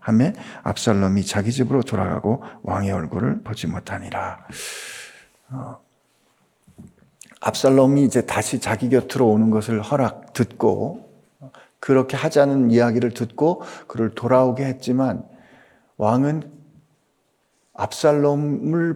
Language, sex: Korean, male